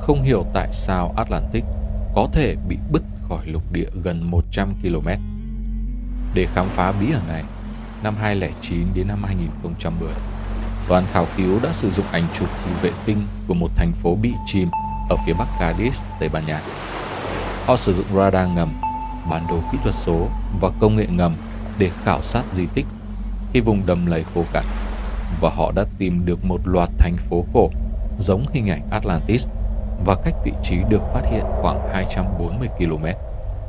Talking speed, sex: 175 wpm, male